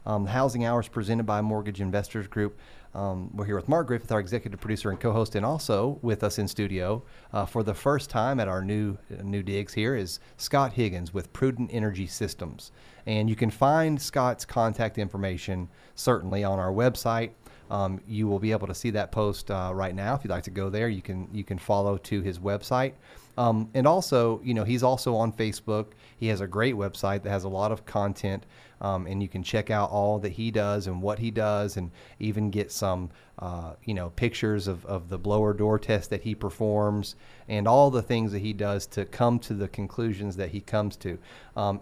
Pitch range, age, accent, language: 100-115 Hz, 30-49, American, English